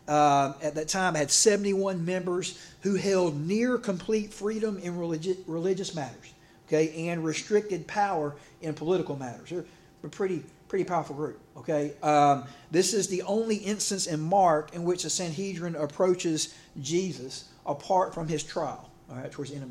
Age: 40-59